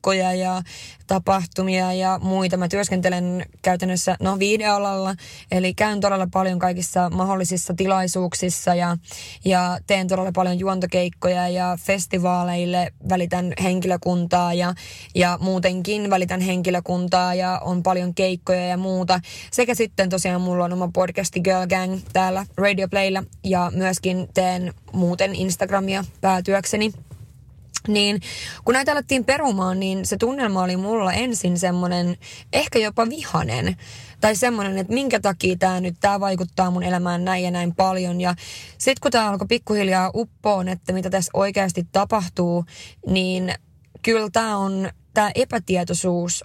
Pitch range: 180-195 Hz